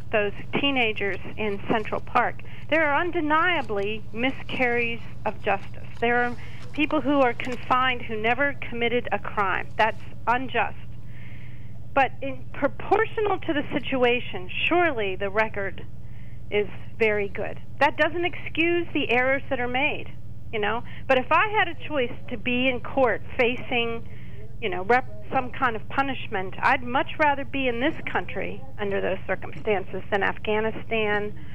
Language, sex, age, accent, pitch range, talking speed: English, female, 40-59, American, 220-280 Hz, 145 wpm